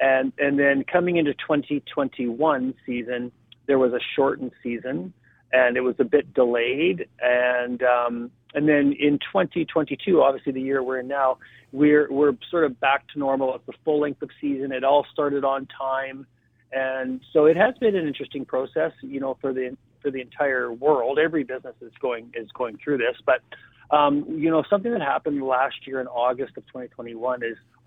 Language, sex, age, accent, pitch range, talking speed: English, male, 40-59, American, 125-145 Hz, 185 wpm